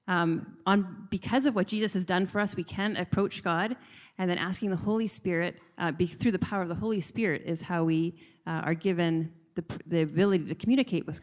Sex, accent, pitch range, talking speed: female, American, 170-200 Hz, 220 wpm